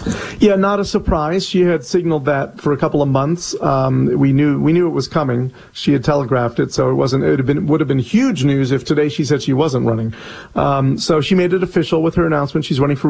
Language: English